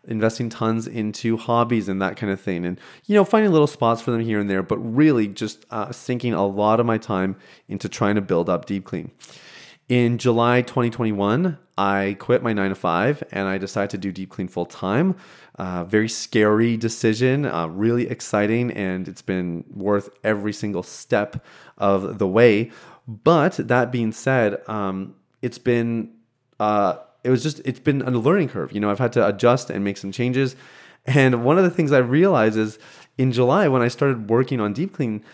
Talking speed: 190 wpm